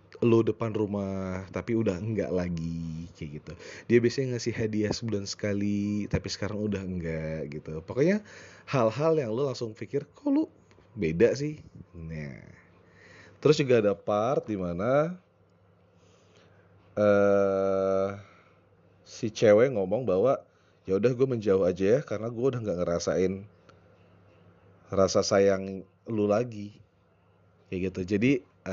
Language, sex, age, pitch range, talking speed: Indonesian, male, 30-49, 90-110 Hz, 125 wpm